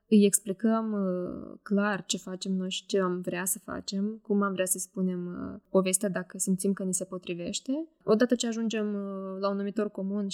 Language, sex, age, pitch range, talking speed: Romanian, female, 20-39, 190-215 Hz, 180 wpm